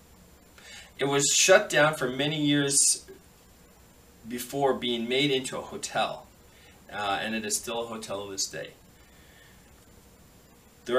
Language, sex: English, male